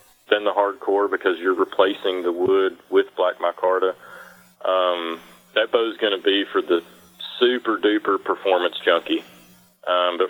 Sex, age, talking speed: male, 40-59, 150 wpm